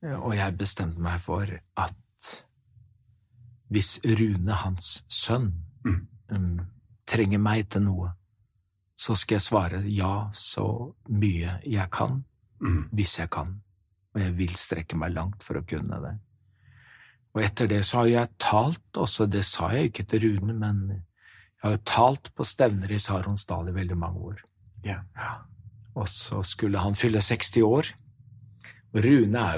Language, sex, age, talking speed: Swedish, male, 40-59, 145 wpm